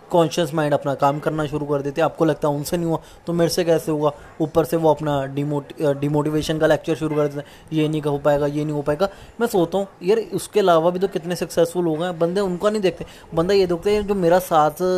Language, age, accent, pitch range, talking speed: Hindi, 20-39, native, 145-170 Hz, 260 wpm